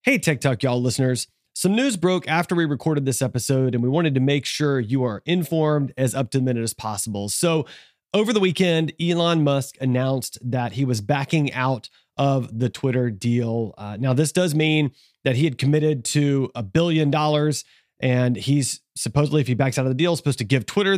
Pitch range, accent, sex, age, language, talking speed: 125-160 Hz, American, male, 30-49, English, 205 wpm